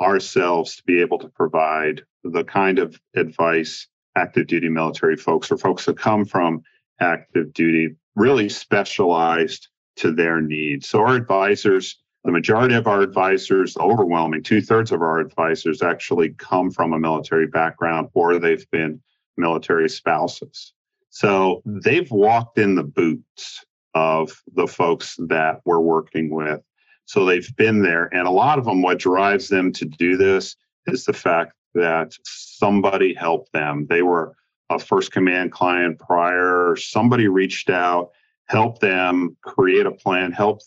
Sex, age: male, 40-59